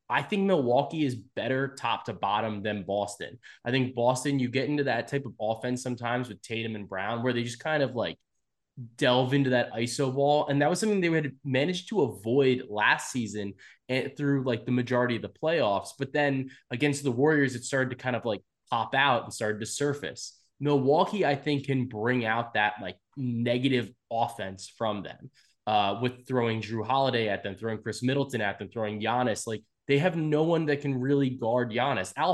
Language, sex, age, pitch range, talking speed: English, male, 20-39, 115-140 Hz, 200 wpm